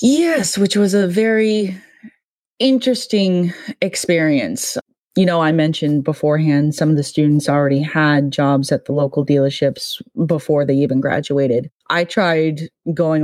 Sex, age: female, 20-39